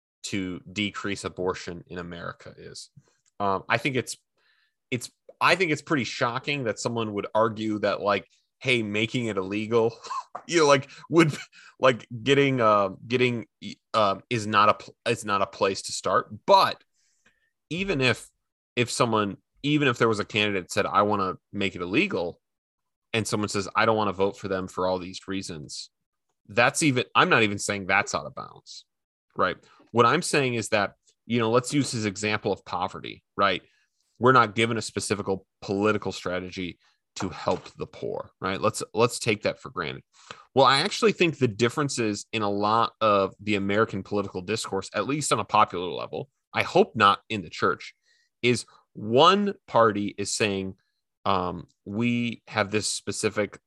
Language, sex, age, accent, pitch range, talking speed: English, male, 30-49, American, 100-125 Hz, 175 wpm